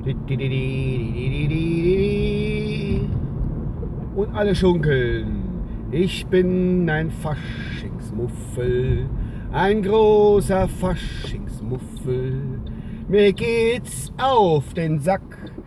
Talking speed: 55 wpm